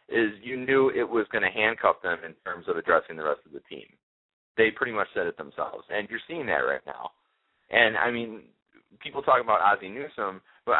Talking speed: 215 wpm